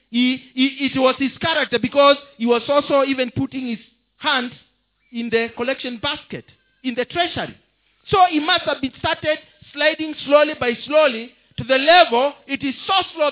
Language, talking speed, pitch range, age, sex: English, 170 wpm, 200-260 Hz, 50-69, male